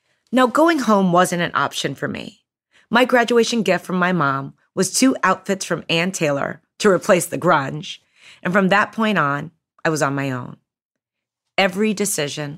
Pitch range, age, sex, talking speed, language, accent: 150-200 Hz, 30-49, female, 170 wpm, English, American